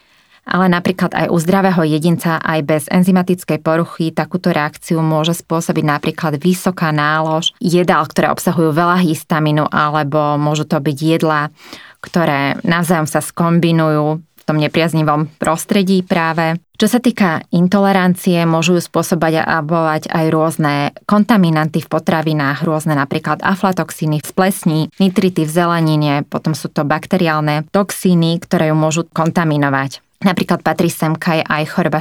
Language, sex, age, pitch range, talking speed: Slovak, female, 20-39, 155-180 Hz, 135 wpm